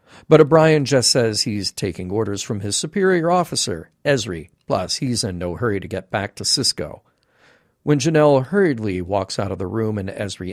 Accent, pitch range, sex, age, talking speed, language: American, 100-140 Hz, male, 50-69, 180 wpm, English